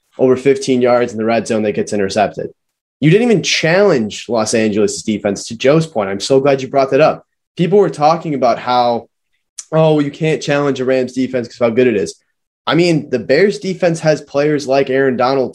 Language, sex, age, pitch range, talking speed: English, male, 20-39, 115-155 Hz, 210 wpm